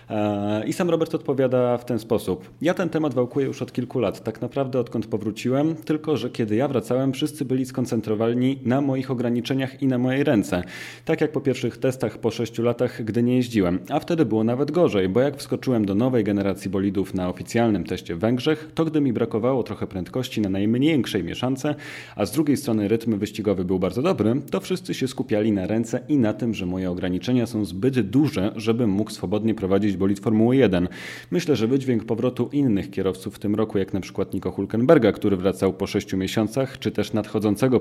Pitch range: 105-145 Hz